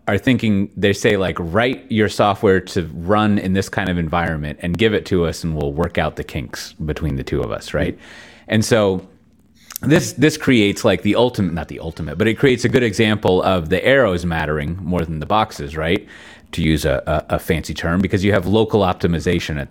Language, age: English, 30-49